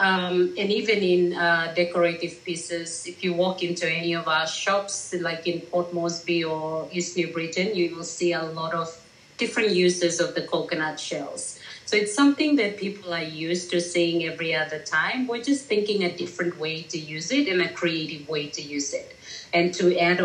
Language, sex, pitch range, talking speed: English, female, 160-180 Hz, 195 wpm